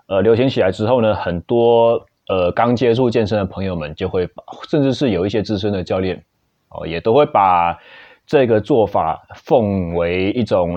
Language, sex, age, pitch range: Chinese, male, 30-49, 95-115 Hz